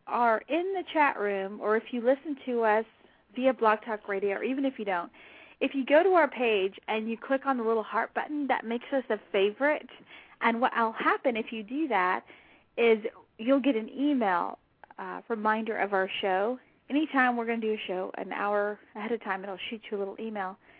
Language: English